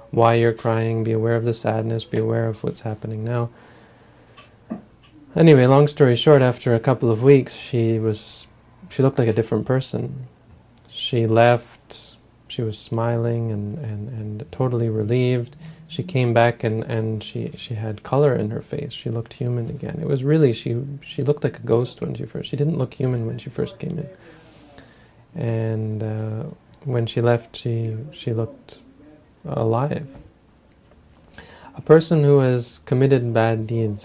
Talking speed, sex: 165 wpm, male